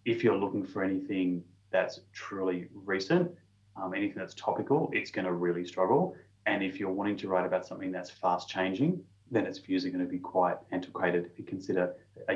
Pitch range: 90-110 Hz